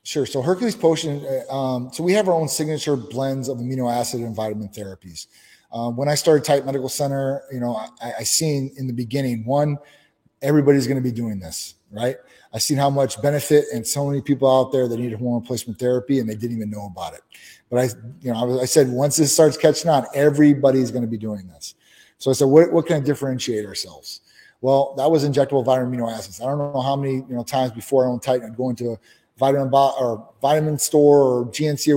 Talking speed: 235 wpm